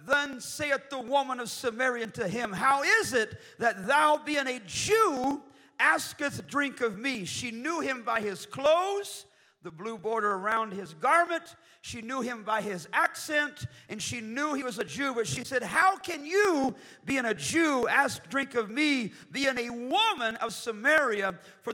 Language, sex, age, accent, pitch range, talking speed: English, male, 50-69, American, 225-290 Hz, 175 wpm